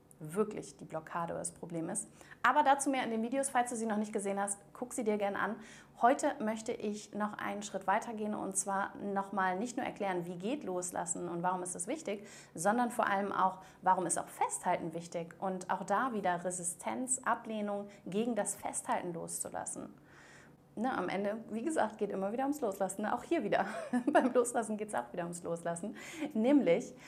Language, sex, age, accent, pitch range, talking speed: German, female, 30-49, German, 185-230 Hz, 195 wpm